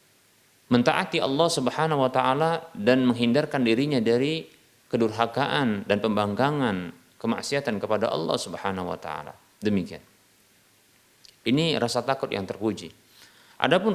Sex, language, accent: male, Indonesian, native